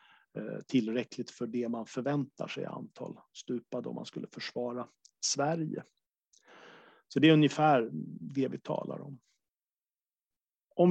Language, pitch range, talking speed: Swedish, 120-155 Hz, 120 wpm